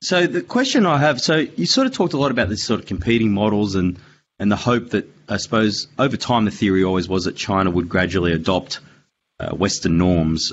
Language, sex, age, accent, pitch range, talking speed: English, male, 30-49, Australian, 90-110 Hz, 220 wpm